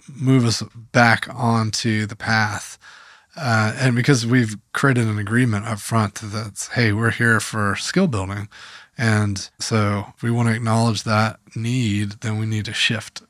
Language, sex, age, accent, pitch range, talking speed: English, male, 20-39, American, 105-125 Hz, 165 wpm